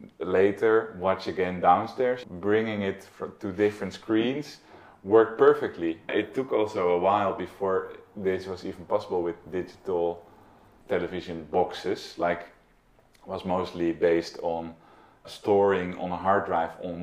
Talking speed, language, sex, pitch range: 130 wpm, English, male, 85-105 Hz